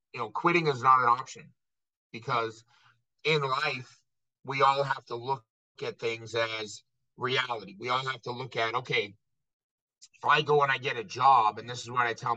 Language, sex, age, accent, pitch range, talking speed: English, male, 50-69, American, 120-145 Hz, 195 wpm